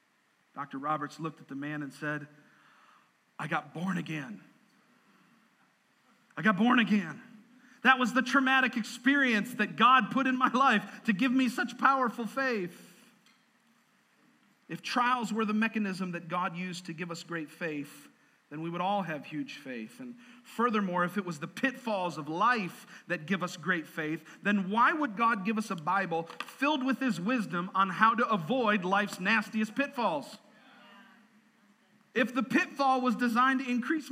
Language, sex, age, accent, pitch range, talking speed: English, male, 40-59, American, 175-255 Hz, 165 wpm